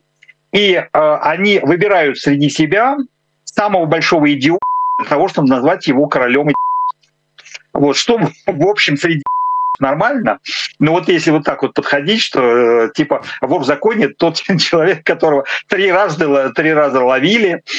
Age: 50-69